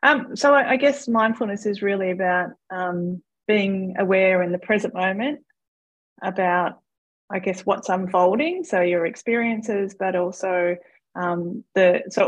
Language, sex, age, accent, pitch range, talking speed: English, female, 30-49, Australian, 180-210 Hz, 140 wpm